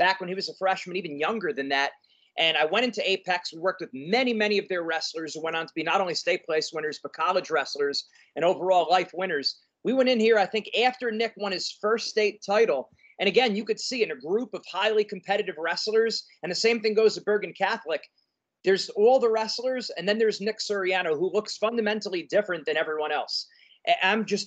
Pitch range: 180-215 Hz